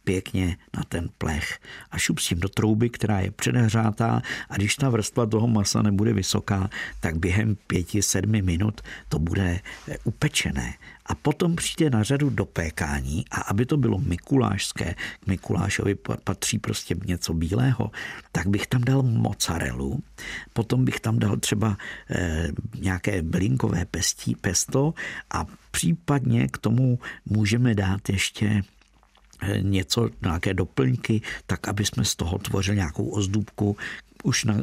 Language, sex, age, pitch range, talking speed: Czech, male, 50-69, 90-115 Hz, 135 wpm